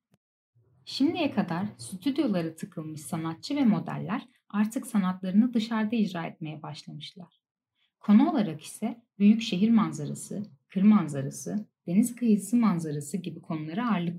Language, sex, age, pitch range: Turkish, female, 10-29, 170-220 Hz